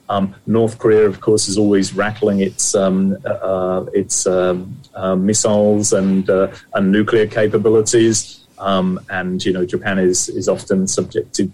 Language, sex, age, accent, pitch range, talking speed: English, male, 30-49, British, 95-115 Hz, 150 wpm